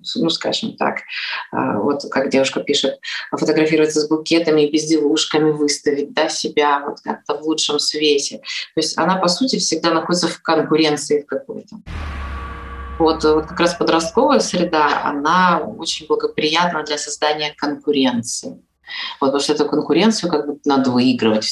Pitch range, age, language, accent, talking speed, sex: 150-195 Hz, 20-39, Russian, native, 145 wpm, female